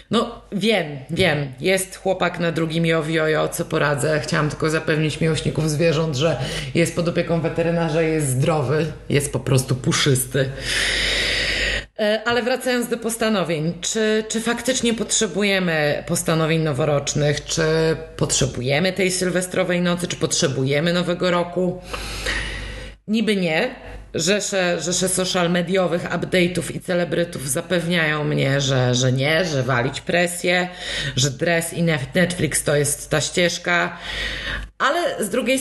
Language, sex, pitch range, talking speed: Polish, female, 150-190 Hz, 125 wpm